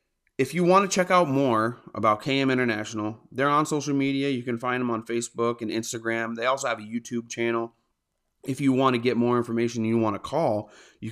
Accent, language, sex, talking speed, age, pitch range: American, English, male, 220 wpm, 30-49, 100-125 Hz